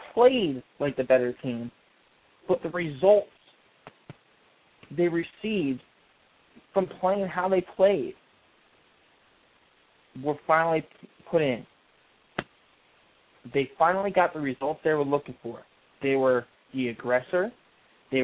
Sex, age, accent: male, 20-39, American